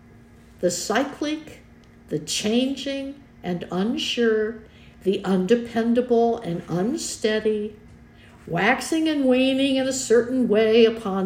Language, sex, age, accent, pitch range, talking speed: English, female, 60-79, American, 195-265 Hz, 95 wpm